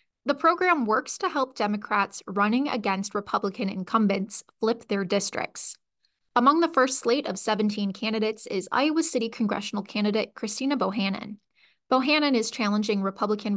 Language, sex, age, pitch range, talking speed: English, female, 20-39, 195-230 Hz, 135 wpm